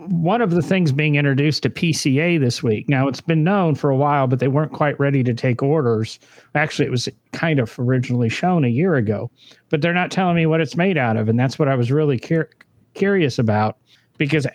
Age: 50-69